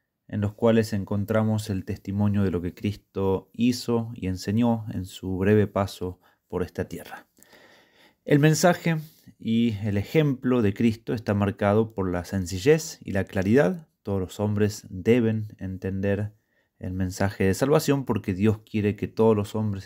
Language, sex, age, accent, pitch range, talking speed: Spanish, male, 30-49, Argentinian, 100-120 Hz, 155 wpm